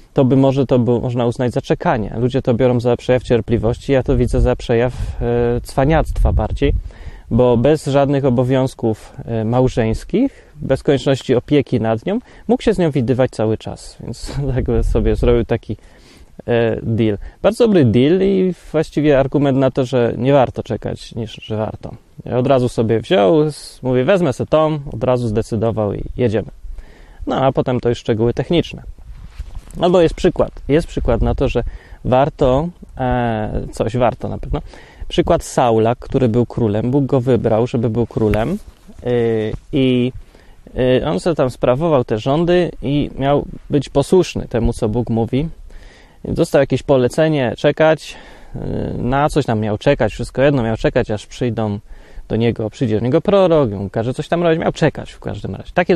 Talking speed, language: 165 wpm, Polish